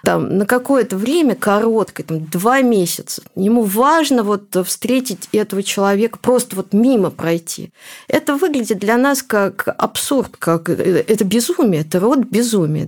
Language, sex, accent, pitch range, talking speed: Russian, female, native, 190-235 Hz, 140 wpm